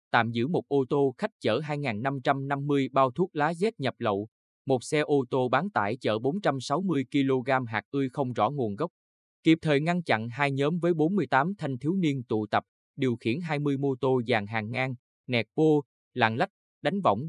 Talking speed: 195 wpm